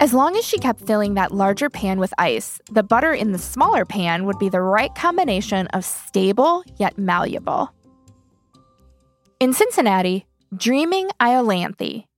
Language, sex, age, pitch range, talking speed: English, female, 20-39, 190-250 Hz, 150 wpm